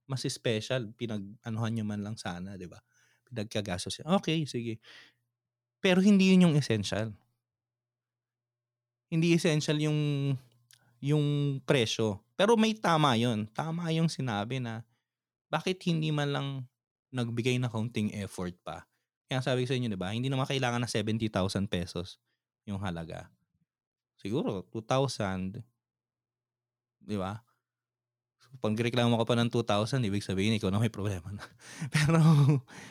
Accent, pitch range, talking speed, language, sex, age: native, 110-140 Hz, 130 wpm, Filipino, male, 20-39